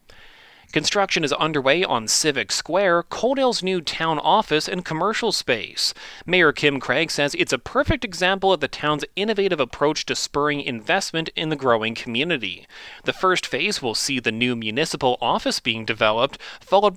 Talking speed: 160 wpm